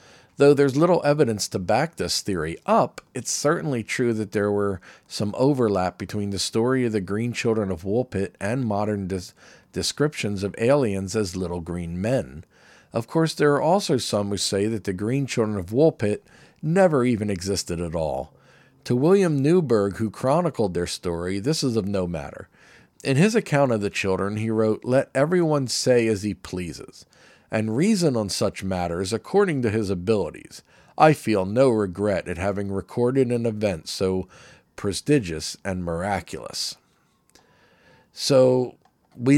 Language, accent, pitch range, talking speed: English, American, 100-140 Hz, 160 wpm